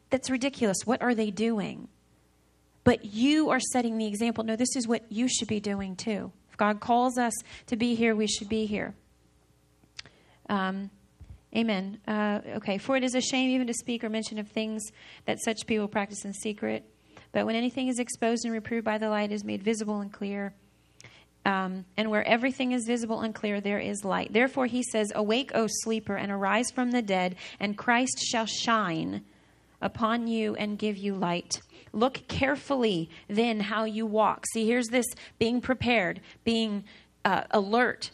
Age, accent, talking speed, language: 30-49, American, 180 wpm, English